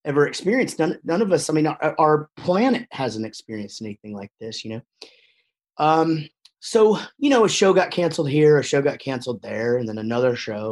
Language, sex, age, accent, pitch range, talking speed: English, male, 30-49, American, 125-170 Hz, 200 wpm